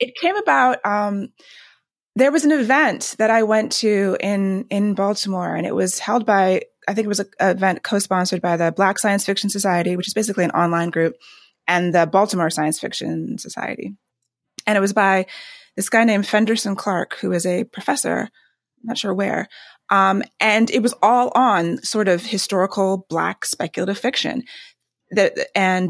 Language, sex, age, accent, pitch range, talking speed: English, female, 20-39, American, 180-225 Hz, 175 wpm